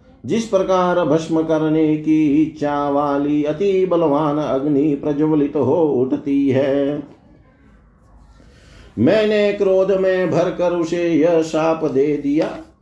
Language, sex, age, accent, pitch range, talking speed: Hindi, male, 50-69, native, 150-180 Hz, 110 wpm